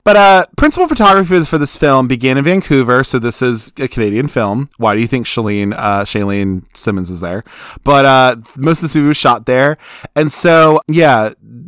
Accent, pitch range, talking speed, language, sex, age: American, 110-140 Hz, 190 wpm, English, male, 20-39